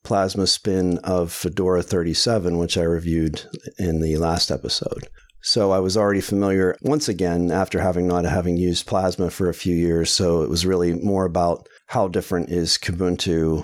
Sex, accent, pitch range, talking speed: male, American, 90-110 Hz, 170 wpm